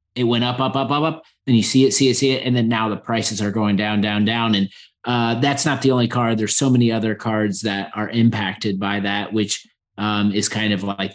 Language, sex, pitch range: English, male, 100-125 Hz